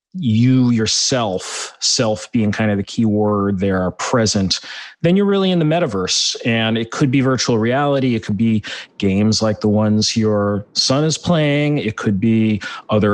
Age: 30-49